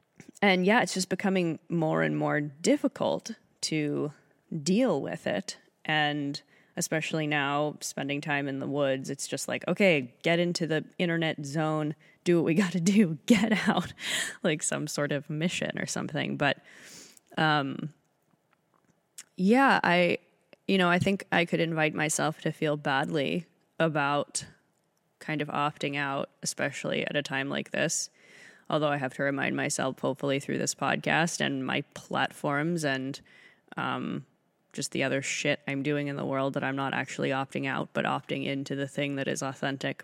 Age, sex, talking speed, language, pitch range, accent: 20-39, female, 160 wpm, English, 140-180 Hz, American